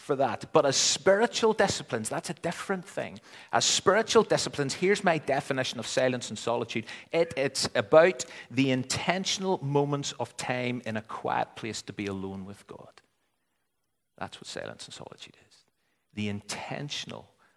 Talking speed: 145 wpm